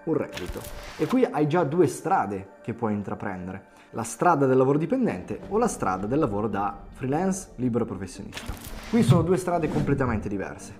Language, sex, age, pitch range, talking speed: Italian, male, 20-39, 100-130 Hz, 170 wpm